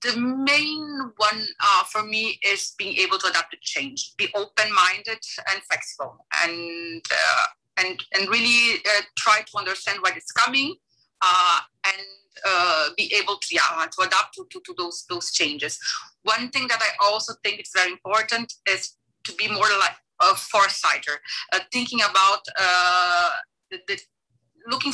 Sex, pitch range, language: female, 180-235 Hz, English